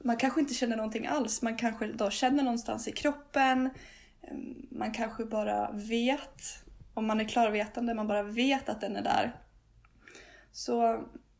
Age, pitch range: 20-39, 210-250 Hz